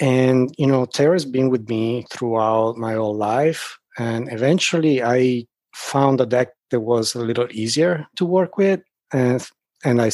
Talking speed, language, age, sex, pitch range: 170 wpm, English, 30-49, male, 115-145 Hz